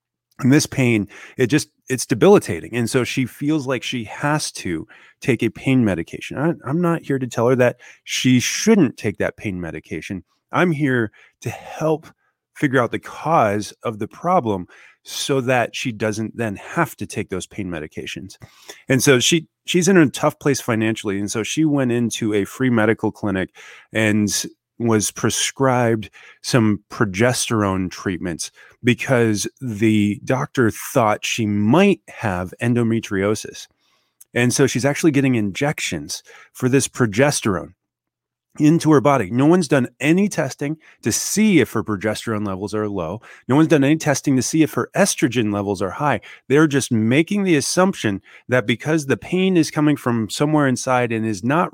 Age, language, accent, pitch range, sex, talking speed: 30-49, English, American, 110-150 Hz, male, 165 wpm